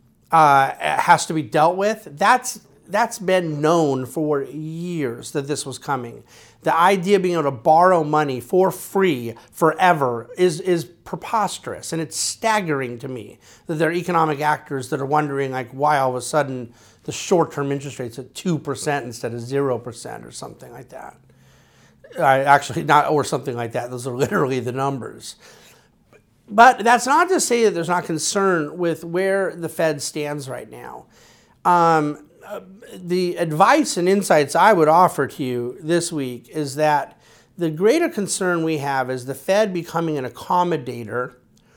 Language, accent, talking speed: English, American, 170 wpm